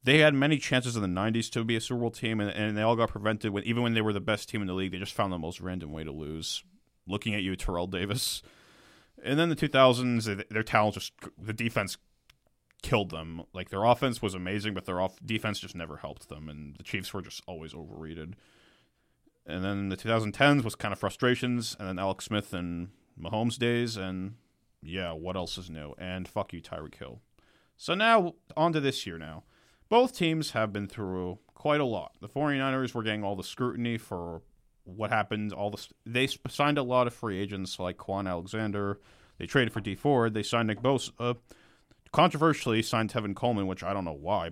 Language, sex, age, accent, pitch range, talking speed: English, male, 30-49, American, 95-125 Hz, 215 wpm